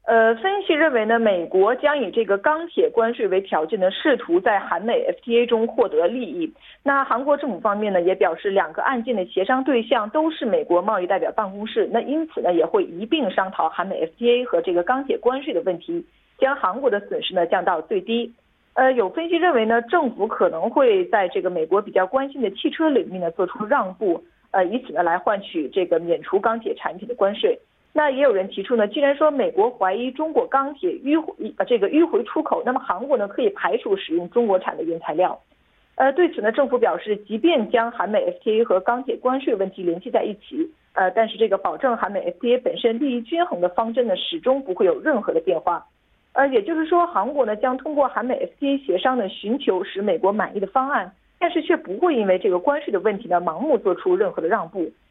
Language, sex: Korean, female